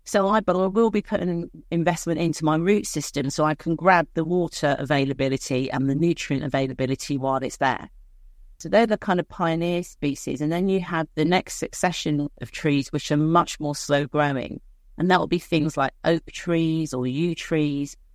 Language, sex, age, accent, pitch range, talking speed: English, female, 40-59, British, 145-180 Hz, 185 wpm